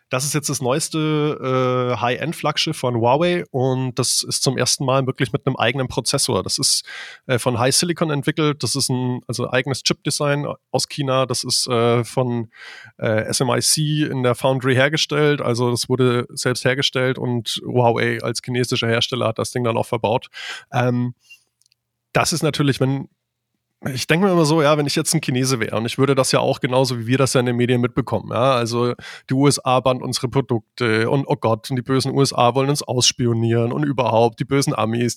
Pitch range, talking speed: 120-140 Hz, 200 wpm